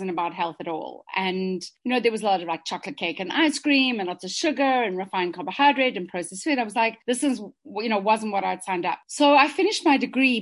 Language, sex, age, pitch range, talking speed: English, female, 30-49, 195-255 Hz, 260 wpm